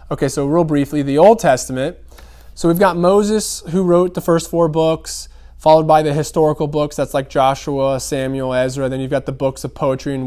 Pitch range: 125-155 Hz